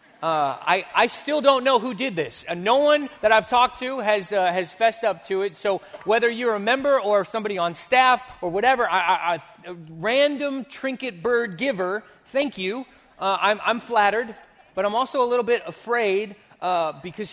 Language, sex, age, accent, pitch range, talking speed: English, male, 30-49, American, 165-230 Hz, 195 wpm